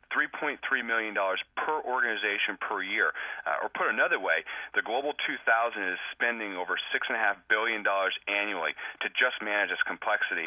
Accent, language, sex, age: American, English, male, 40-59